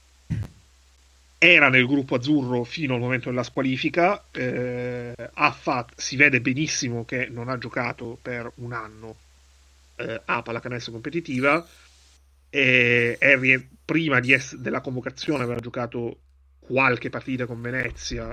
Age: 30-49